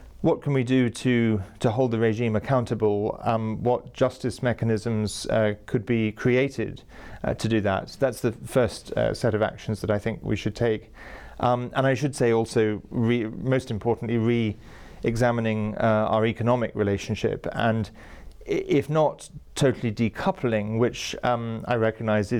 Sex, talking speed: male, 150 wpm